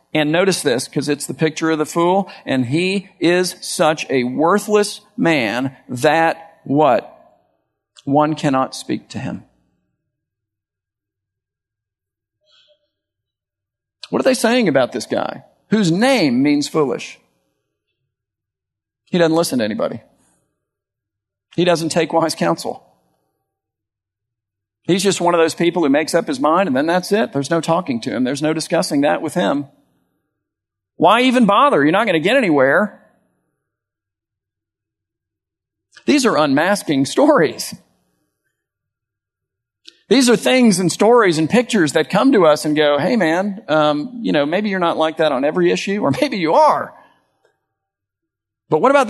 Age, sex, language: 50-69, male, English